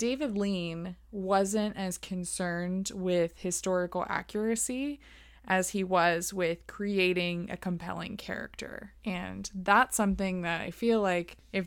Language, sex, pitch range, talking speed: English, female, 180-220 Hz, 125 wpm